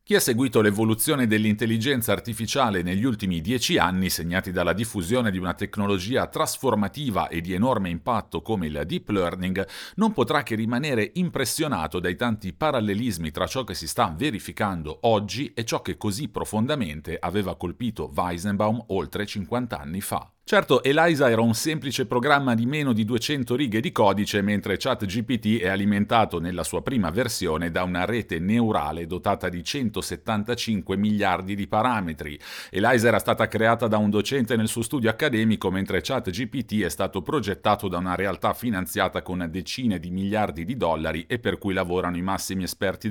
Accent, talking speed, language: native, 160 wpm, Italian